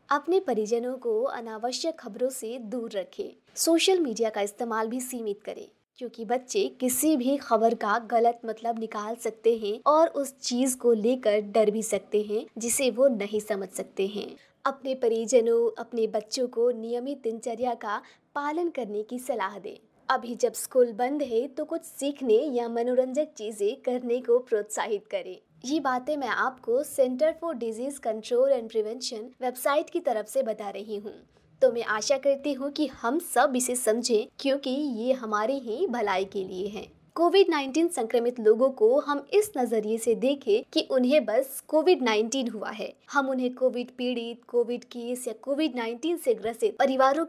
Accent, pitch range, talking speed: Indian, 225-280 Hz, 150 wpm